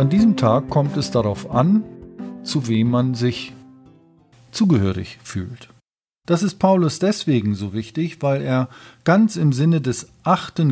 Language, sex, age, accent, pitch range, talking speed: German, male, 40-59, German, 115-145 Hz, 145 wpm